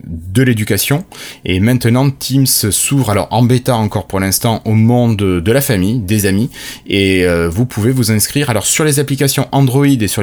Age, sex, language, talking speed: 20-39, male, French, 190 wpm